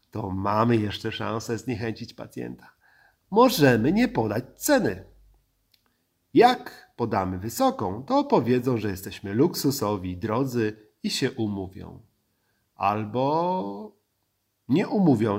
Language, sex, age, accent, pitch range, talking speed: Polish, male, 40-59, native, 95-120 Hz, 100 wpm